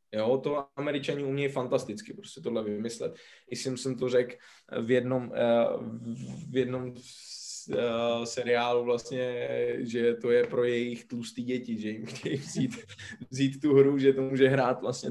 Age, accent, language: 20-39, native, Czech